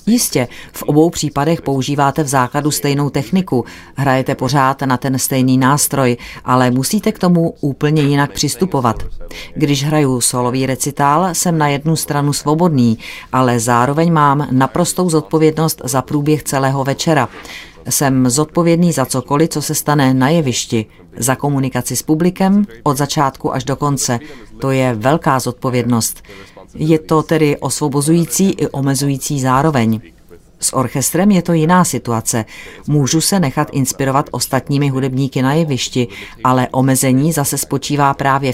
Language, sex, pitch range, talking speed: Czech, female, 125-155 Hz, 135 wpm